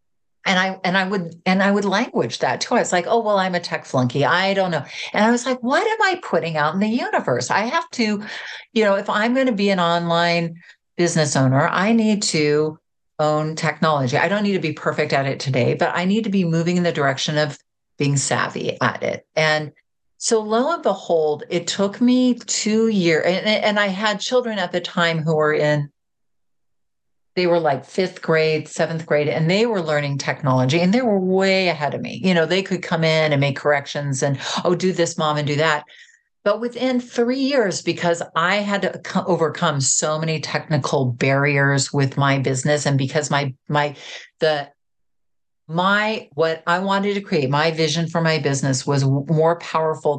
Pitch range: 145-195 Hz